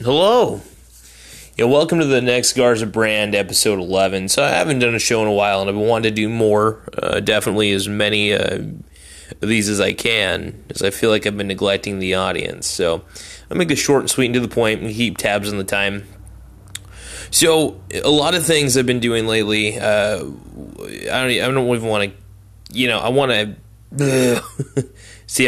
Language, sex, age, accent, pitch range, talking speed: English, male, 20-39, American, 100-125 Hz, 195 wpm